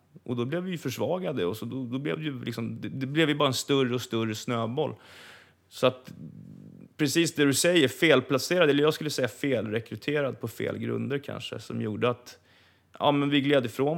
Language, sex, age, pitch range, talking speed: Swedish, male, 30-49, 105-130 Hz, 195 wpm